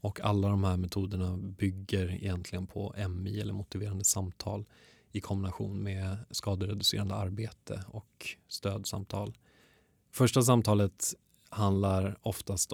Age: 20-39